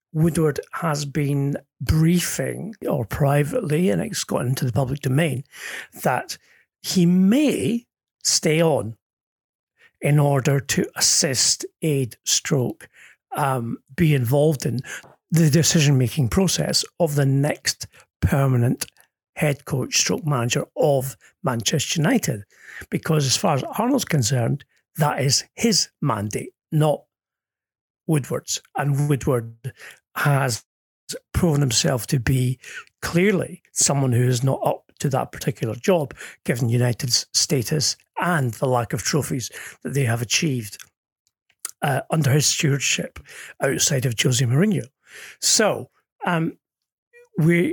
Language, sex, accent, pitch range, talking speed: English, male, British, 130-165 Hz, 120 wpm